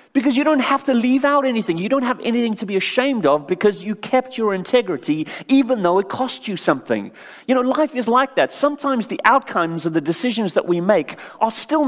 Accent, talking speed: British, 220 wpm